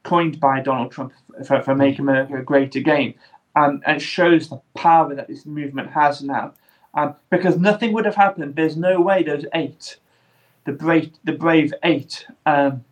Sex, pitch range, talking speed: male, 140-160 Hz, 175 wpm